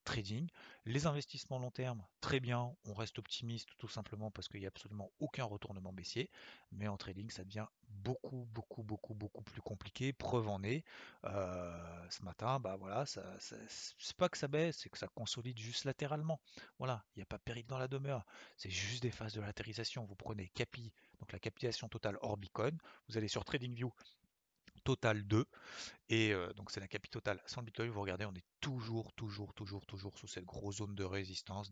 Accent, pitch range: French, 100-125 Hz